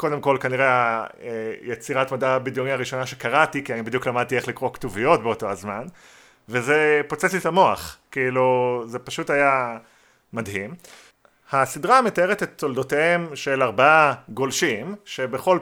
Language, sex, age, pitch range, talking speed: Hebrew, male, 30-49, 120-145 Hz, 125 wpm